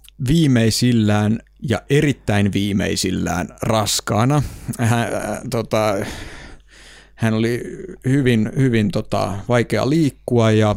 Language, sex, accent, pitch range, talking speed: Finnish, male, native, 105-140 Hz, 60 wpm